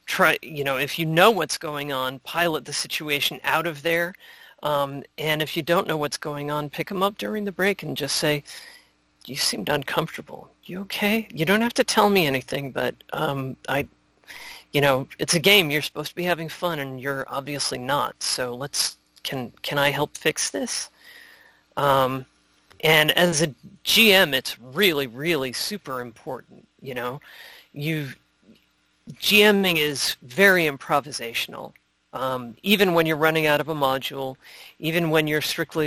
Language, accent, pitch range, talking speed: English, American, 130-170 Hz, 170 wpm